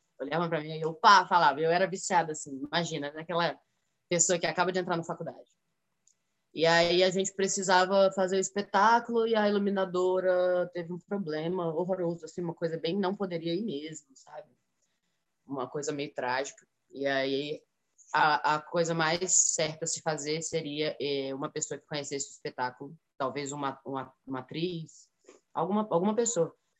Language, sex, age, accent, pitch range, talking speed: Portuguese, female, 10-29, Brazilian, 140-180 Hz, 170 wpm